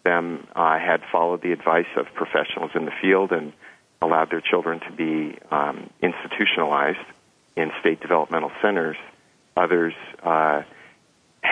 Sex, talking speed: male, 130 wpm